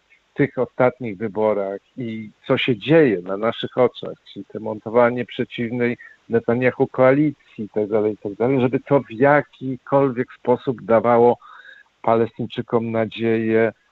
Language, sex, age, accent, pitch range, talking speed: Polish, male, 50-69, native, 110-130 Hz, 115 wpm